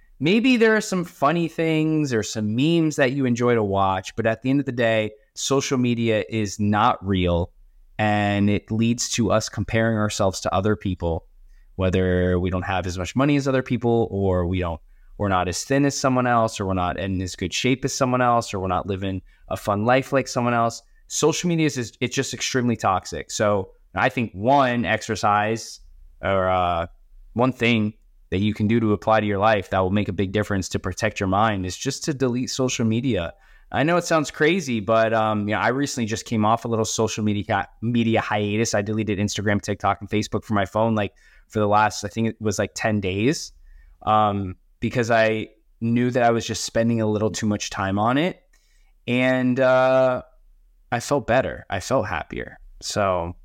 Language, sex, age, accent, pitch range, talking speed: English, male, 20-39, American, 100-125 Hz, 205 wpm